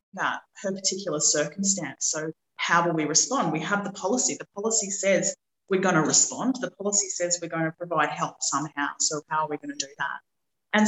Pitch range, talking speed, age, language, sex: 145-180 Hz, 210 wpm, 30-49, English, female